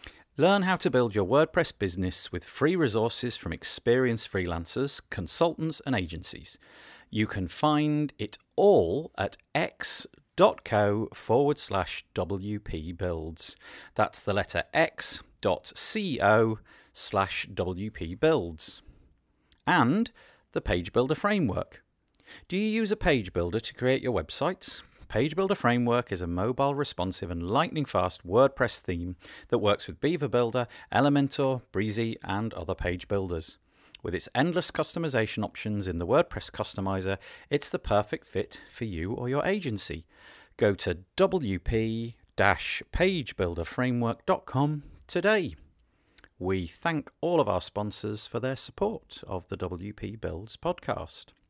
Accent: British